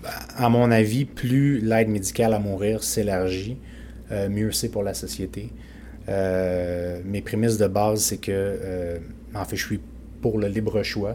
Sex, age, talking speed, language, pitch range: male, 30-49, 150 wpm, French, 100-115 Hz